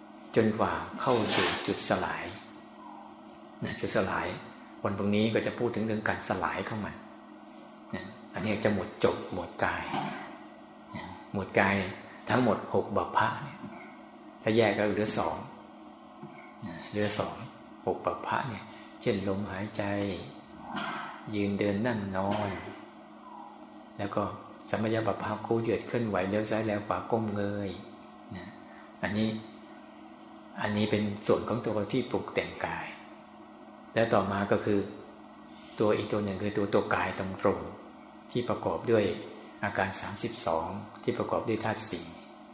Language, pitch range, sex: Thai, 100-110 Hz, male